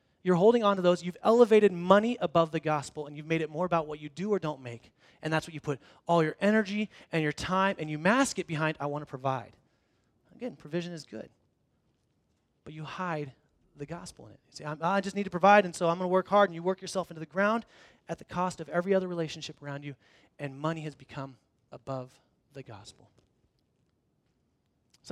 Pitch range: 145-205 Hz